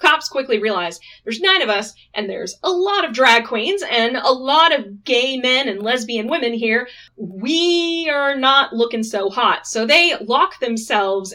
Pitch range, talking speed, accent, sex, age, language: 200-255 Hz, 180 wpm, American, female, 20-39, English